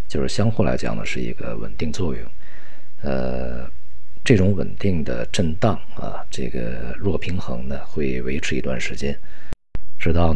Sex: male